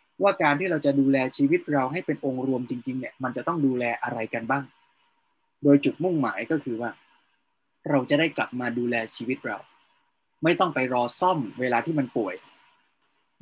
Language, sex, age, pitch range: Thai, male, 20-39, 120-145 Hz